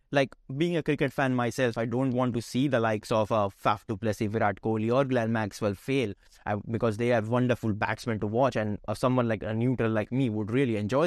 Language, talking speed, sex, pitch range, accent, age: English, 220 wpm, male, 110-145 Hz, Indian, 20-39